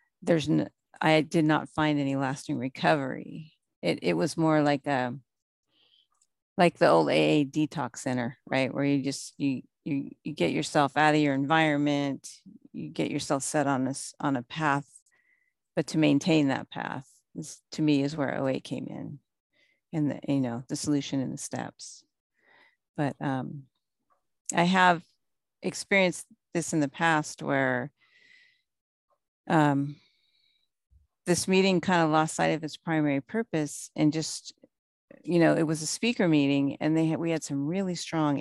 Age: 40-59